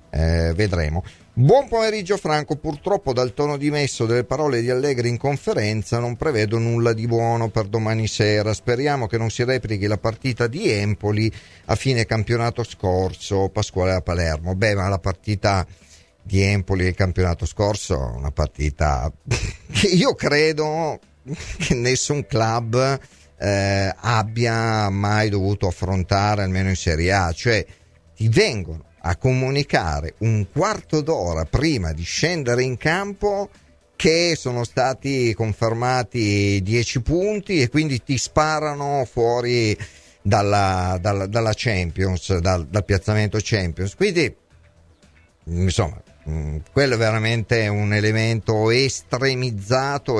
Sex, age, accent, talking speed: male, 40-59, native, 125 wpm